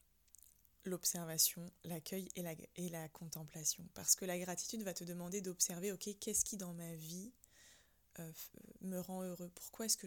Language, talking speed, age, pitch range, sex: French, 165 wpm, 20-39, 170-195 Hz, female